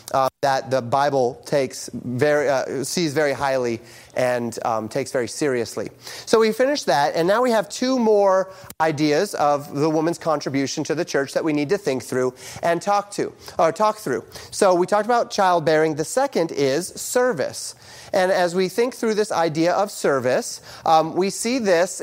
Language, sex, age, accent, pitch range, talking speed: English, male, 30-49, American, 145-195 Hz, 185 wpm